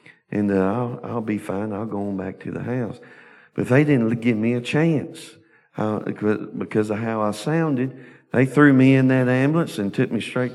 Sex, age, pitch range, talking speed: male, 50-69, 105-130 Hz, 205 wpm